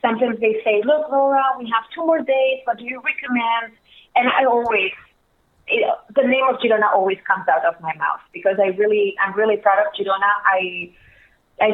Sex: female